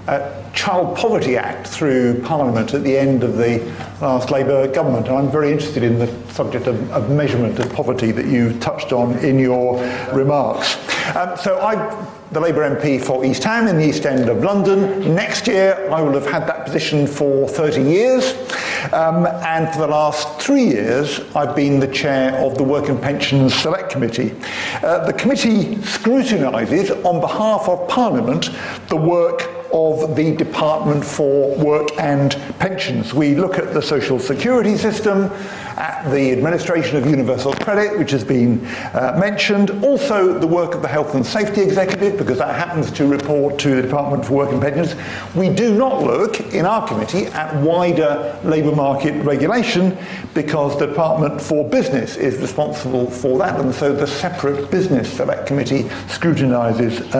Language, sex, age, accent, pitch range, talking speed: English, male, 50-69, British, 135-185 Hz, 170 wpm